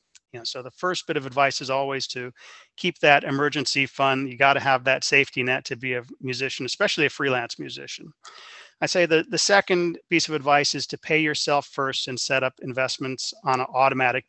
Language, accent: English, American